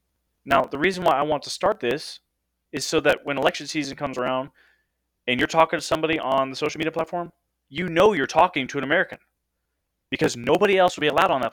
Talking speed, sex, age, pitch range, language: 220 wpm, male, 30-49, 100-150 Hz, English